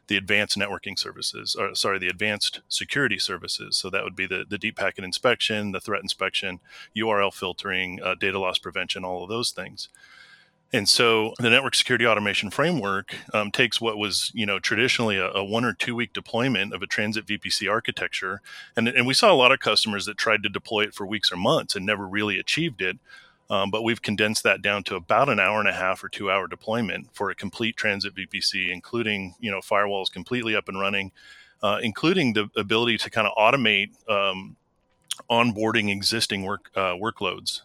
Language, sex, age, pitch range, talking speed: English, male, 30-49, 100-115 Hz, 200 wpm